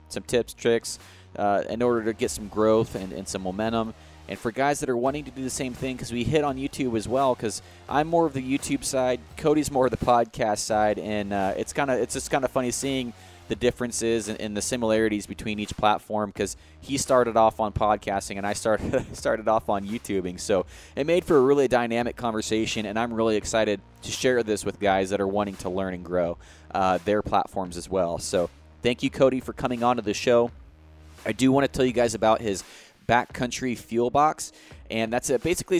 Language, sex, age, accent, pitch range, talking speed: English, male, 20-39, American, 100-130 Hz, 225 wpm